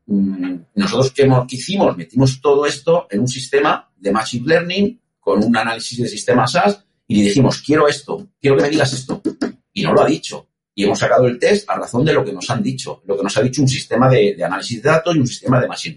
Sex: male